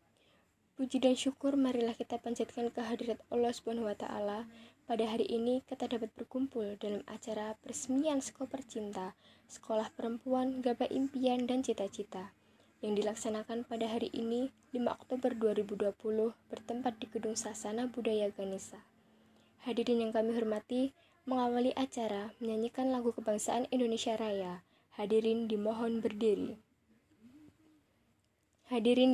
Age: 10-29